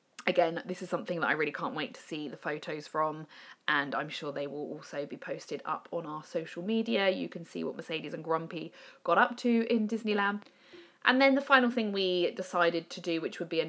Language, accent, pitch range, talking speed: English, British, 165-200 Hz, 230 wpm